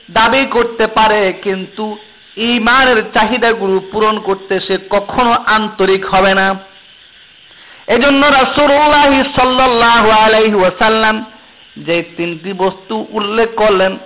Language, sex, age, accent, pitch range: Bengali, male, 50-69, native, 195-245 Hz